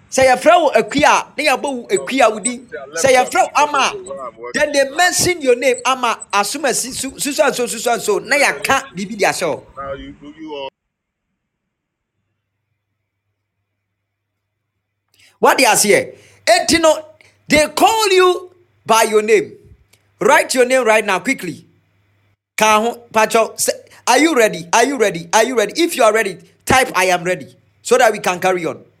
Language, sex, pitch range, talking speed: English, male, 165-250 Hz, 155 wpm